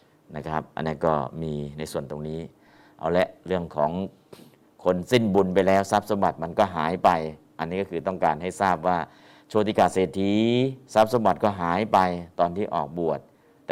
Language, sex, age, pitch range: Thai, male, 50-69, 90-115 Hz